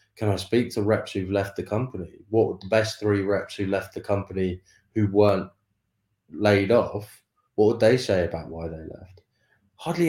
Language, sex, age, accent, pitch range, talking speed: English, male, 20-39, British, 95-110 Hz, 190 wpm